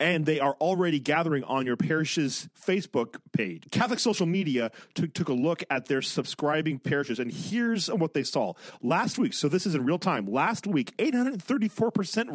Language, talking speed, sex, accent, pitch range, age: English, 215 wpm, male, American, 140-190 Hz, 40-59